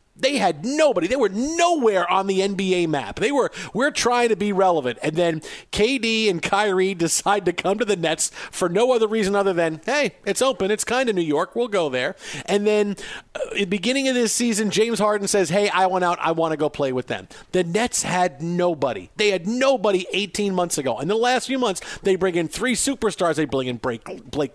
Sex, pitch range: male, 160-210 Hz